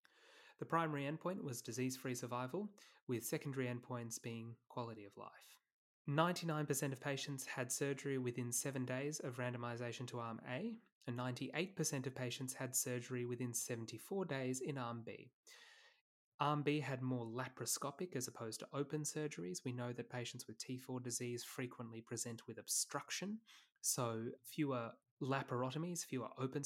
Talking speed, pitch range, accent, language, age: 145 wpm, 120-145 Hz, Australian, English, 20-39